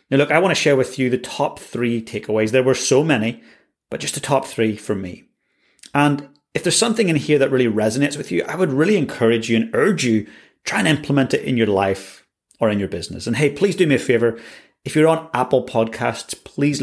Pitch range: 110-145 Hz